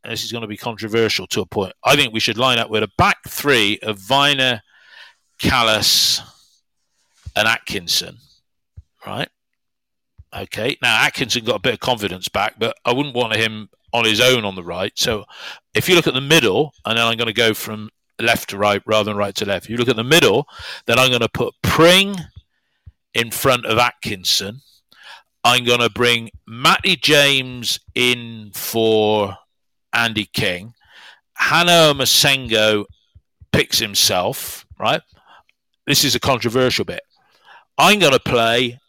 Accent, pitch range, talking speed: British, 110-130 Hz, 165 wpm